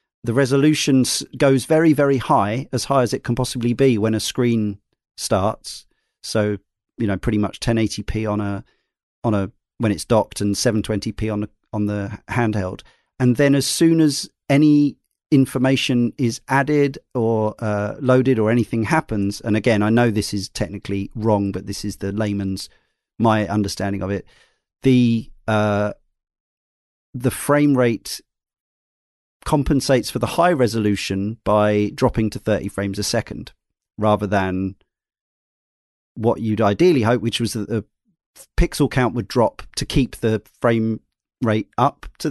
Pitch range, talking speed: 105-130 Hz, 150 wpm